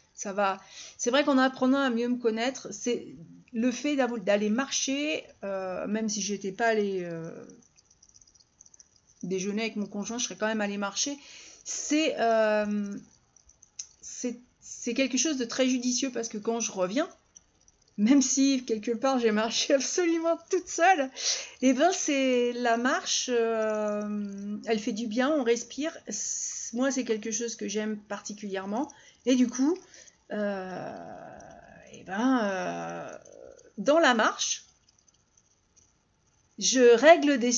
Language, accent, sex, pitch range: French, French, female, 210-270 Hz